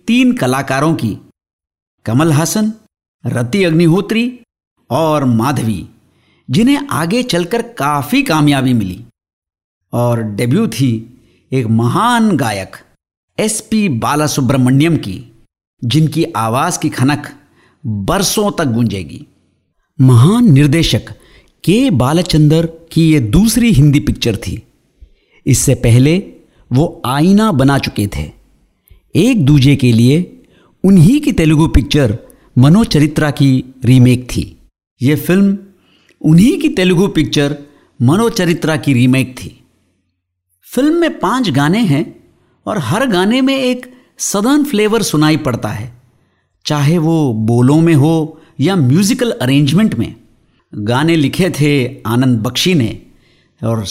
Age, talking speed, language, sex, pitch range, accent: 60-79, 115 wpm, Hindi, male, 120-175 Hz, native